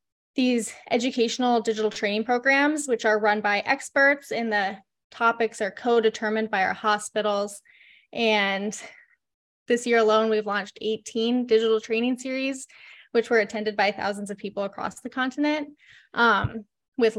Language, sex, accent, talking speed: English, female, American, 140 wpm